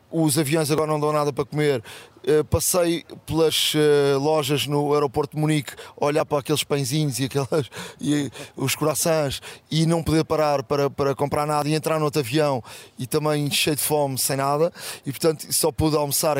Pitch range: 135-160 Hz